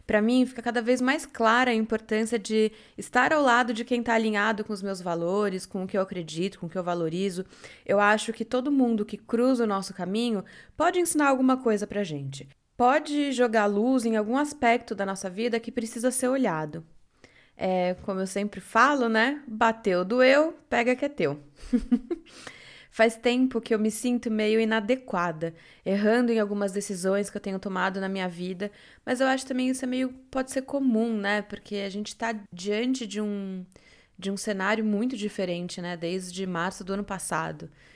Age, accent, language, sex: 20-39, Brazilian, Portuguese, female